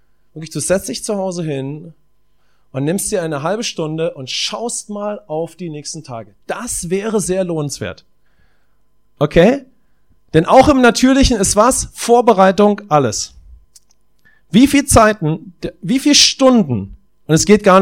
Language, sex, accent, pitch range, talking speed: English, male, German, 145-200 Hz, 145 wpm